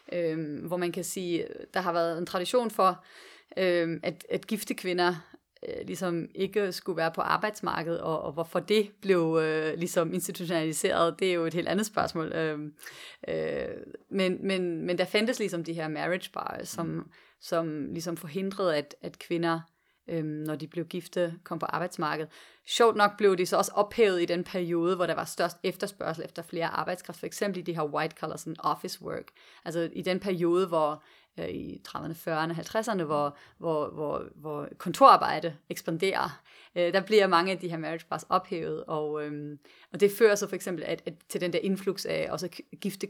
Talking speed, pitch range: 190 wpm, 165-195 Hz